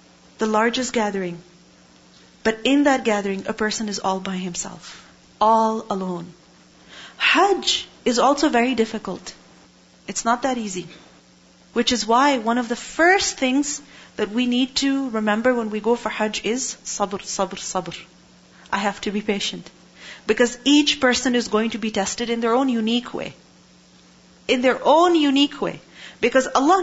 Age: 40-59